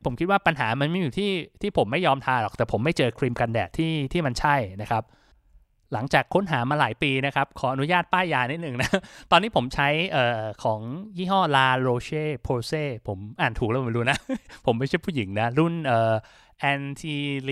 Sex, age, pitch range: male, 20-39, 120-155 Hz